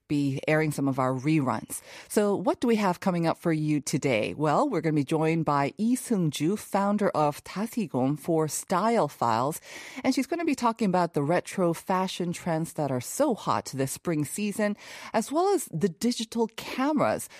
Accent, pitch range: American, 145-210 Hz